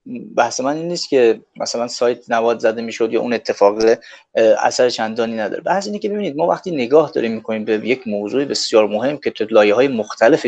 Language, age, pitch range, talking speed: Persian, 30-49, 120-175 Hz, 205 wpm